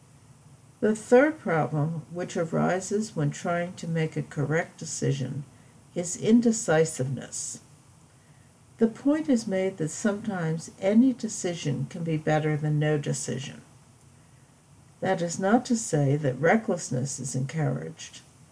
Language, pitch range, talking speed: English, 140-200 Hz, 120 wpm